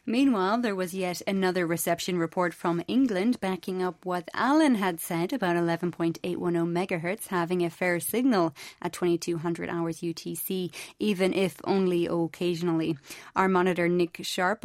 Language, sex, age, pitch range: English, female, 30-49, 175-215 Hz